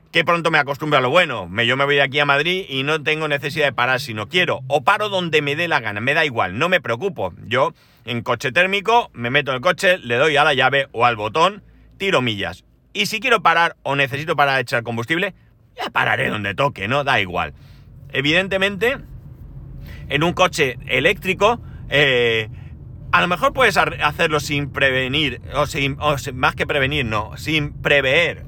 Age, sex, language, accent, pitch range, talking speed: 40-59, male, Spanish, Spanish, 125-155 Hz, 200 wpm